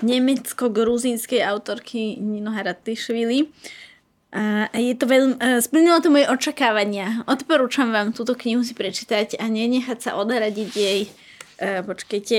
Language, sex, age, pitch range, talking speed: Slovak, female, 20-39, 205-235 Hz, 95 wpm